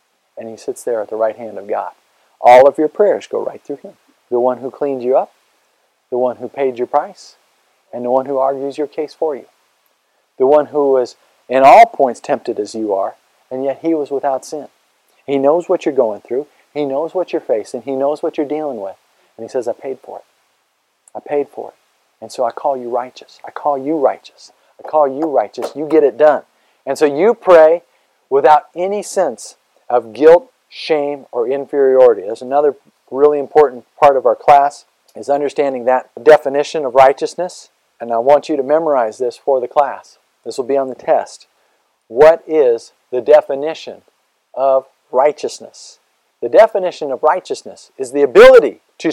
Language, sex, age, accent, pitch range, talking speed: English, male, 40-59, American, 135-175 Hz, 195 wpm